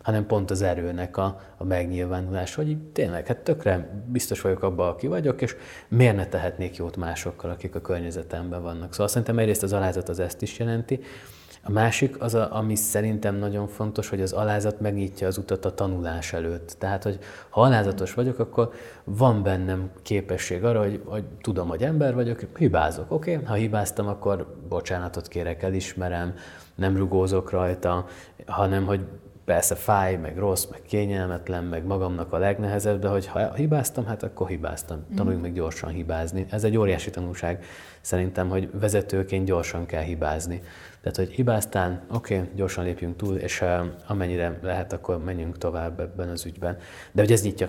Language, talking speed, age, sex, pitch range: Hungarian, 170 wpm, 20-39, male, 90-100 Hz